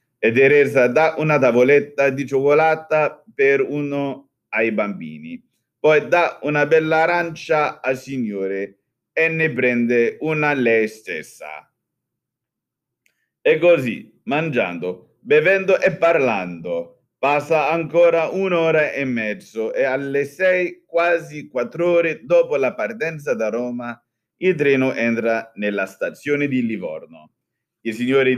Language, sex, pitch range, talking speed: Italian, male, 115-160 Hz, 115 wpm